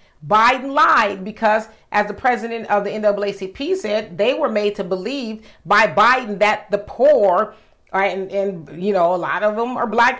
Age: 40-59